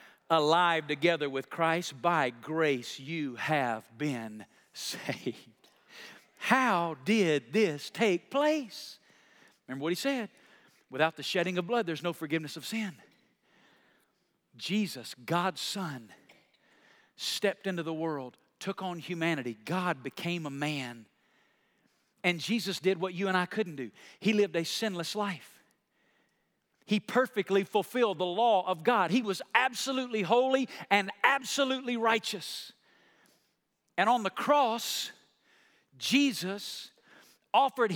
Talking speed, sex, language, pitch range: 120 wpm, male, English, 165-245 Hz